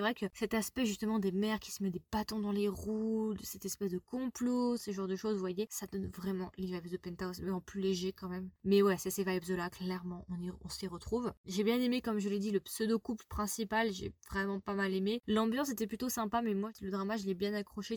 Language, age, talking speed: French, 20-39, 255 wpm